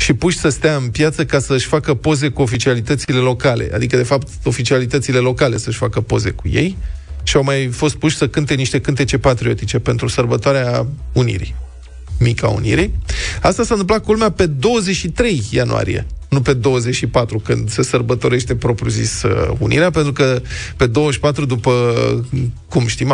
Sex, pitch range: male, 115-150 Hz